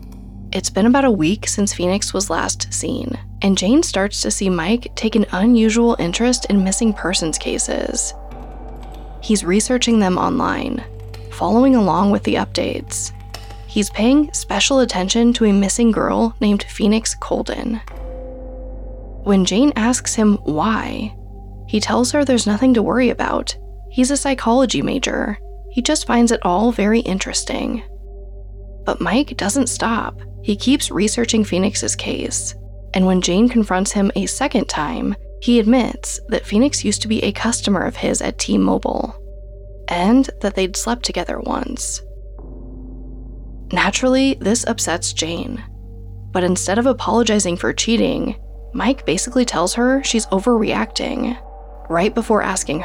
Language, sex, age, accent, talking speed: English, female, 20-39, American, 140 wpm